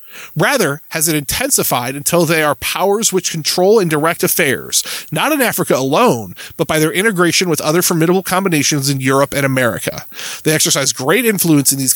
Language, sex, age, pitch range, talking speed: English, male, 20-39, 140-180 Hz, 175 wpm